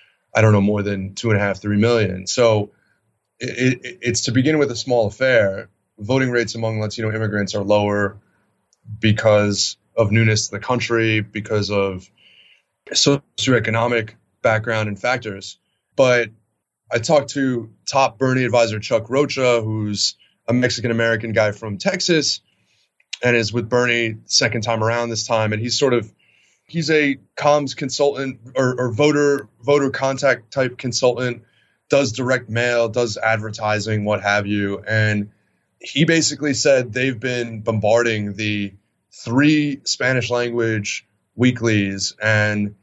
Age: 20-39